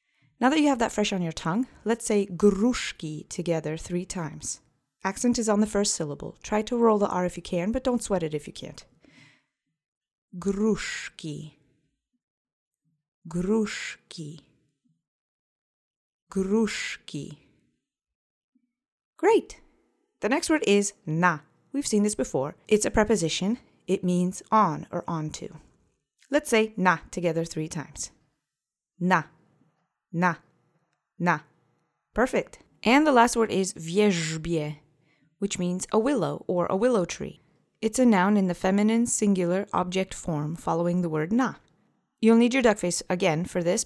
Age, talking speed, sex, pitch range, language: 30-49, 140 wpm, female, 165-215 Hz, English